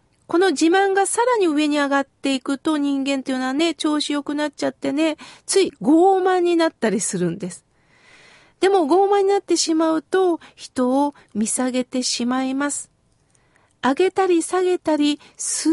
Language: Japanese